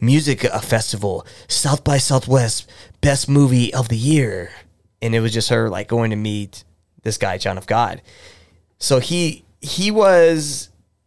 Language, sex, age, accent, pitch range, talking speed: English, male, 20-39, American, 110-140 Hz, 155 wpm